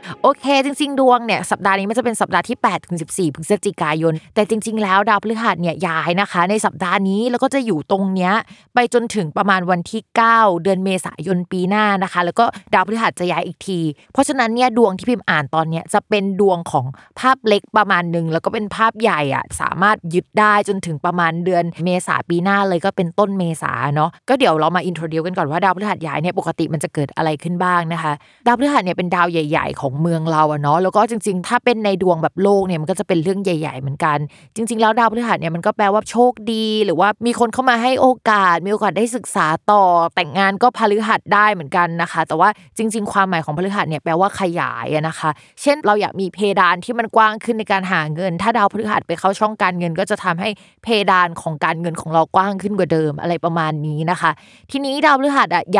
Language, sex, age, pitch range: Thai, female, 20-39, 170-215 Hz